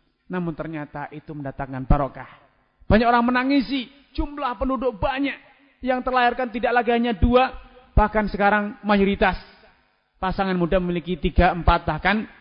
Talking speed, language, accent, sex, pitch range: 125 wpm, Indonesian, native, male, 175-240 Hz